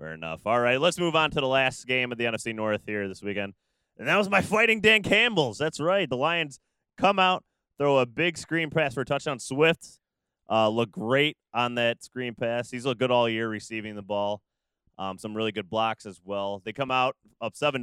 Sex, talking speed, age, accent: male, 225 wpm, 20-39, American